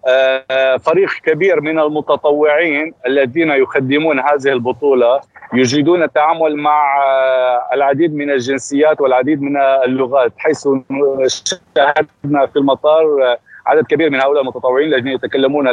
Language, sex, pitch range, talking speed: Arabic, male, 130-155 Hz, 105 wpm